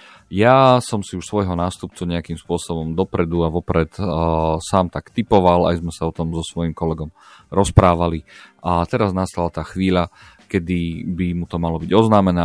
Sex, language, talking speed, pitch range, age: male, Slovak, 175 wpm, 80-90 Hz, 40-59